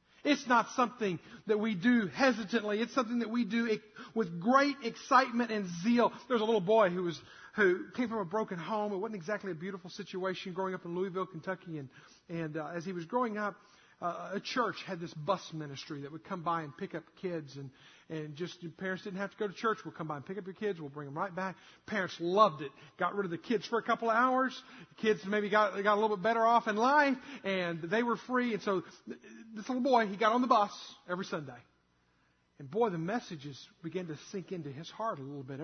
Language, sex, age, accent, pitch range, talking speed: English, male, 50-69, American, 170-240 Hz, 240 wpm